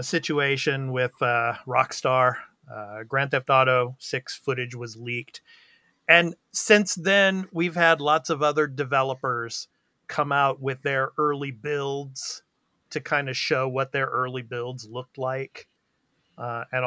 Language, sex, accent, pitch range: English, male, American, 130-155 Hz